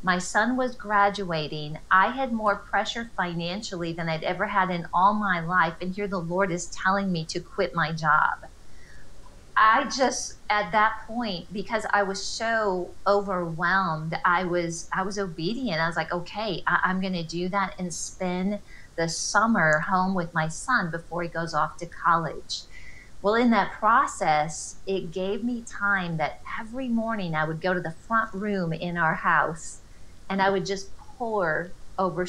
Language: English